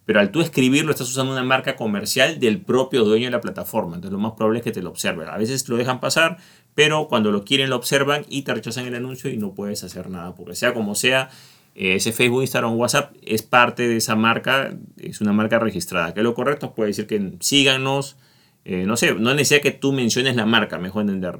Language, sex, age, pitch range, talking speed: Spanish, male, 30-49, 110-135 Hz, 235 wpm